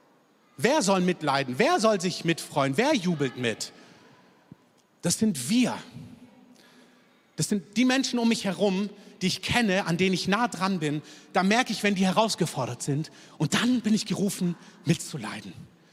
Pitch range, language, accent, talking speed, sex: 160-220 Hz, German, German, 160 wpm, male